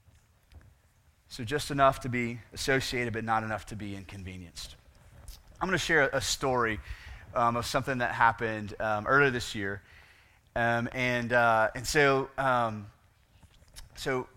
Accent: American